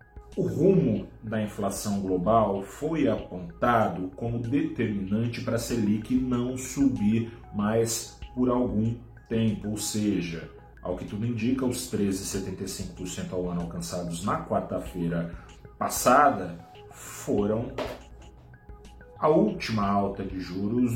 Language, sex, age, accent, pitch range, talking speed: Portuguese, male, 40-59, Brazilian, 95-120 Hz, 110 wpm